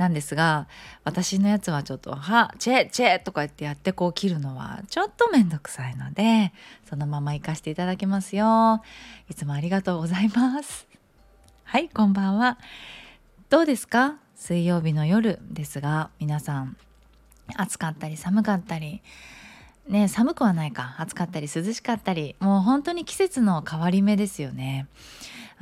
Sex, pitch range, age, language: female, 155-230 Hz, 20-39, Japanese